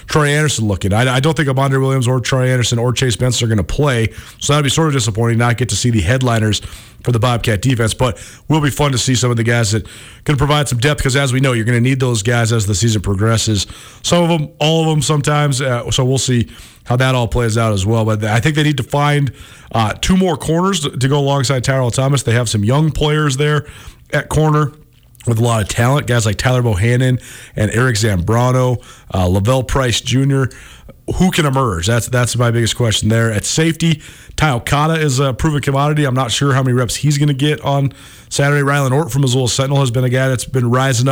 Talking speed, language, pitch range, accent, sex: 240 wpm, English, 115-145 Hz, American, male